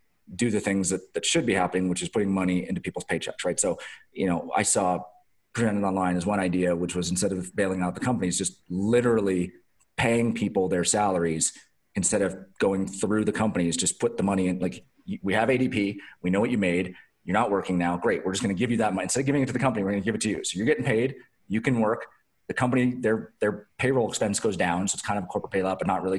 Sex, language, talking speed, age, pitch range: male, English, 250 wpm, 30-49, 95-115 Hz